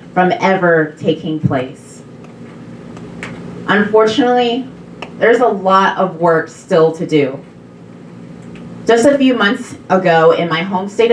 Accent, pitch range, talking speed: American, 135-190 Hz, 120 wpm